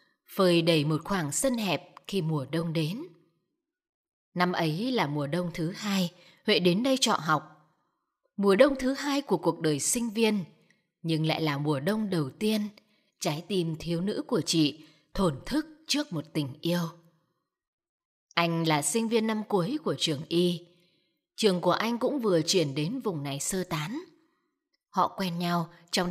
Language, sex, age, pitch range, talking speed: Vietnamese, female, 20-39, 165-220 Hz, 170 wpm